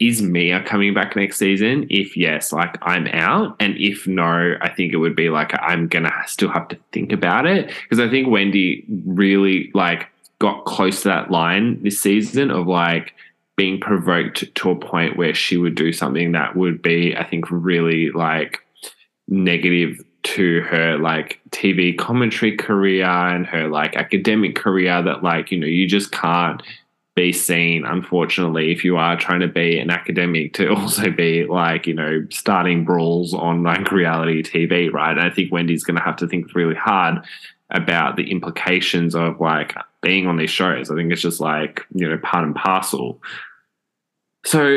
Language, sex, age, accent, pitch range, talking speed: English, male, 10-29, Australian, 85-100 Hz, 180 wpm